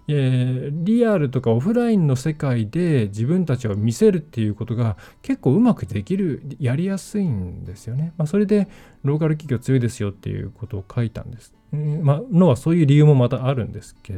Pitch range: 115-165 Hz